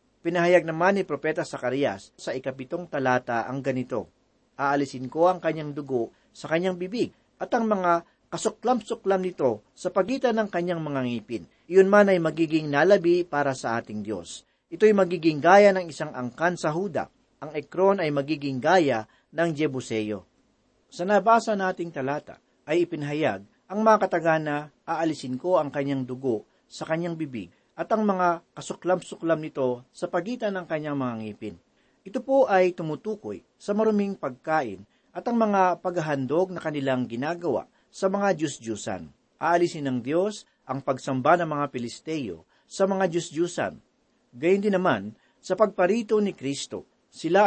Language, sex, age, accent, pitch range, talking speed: Filipino, male, 40-59, native, 135-190 Hz, 150 wpm